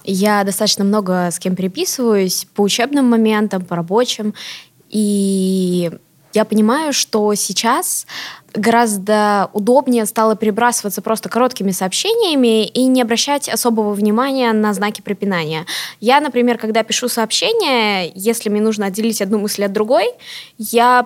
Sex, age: female, 20-39